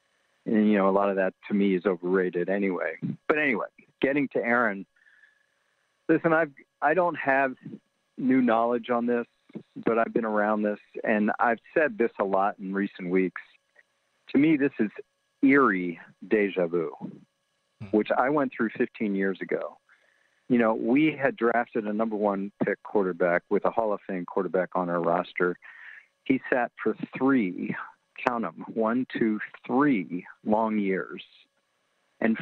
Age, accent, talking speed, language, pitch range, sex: 50-69, American, 155 wpm, English, 100-135 Hz, male